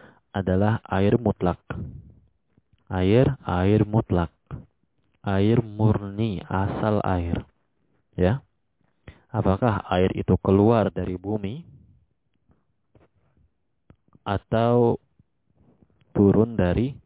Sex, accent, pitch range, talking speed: male, native, 95-110 Hz, 70 wpm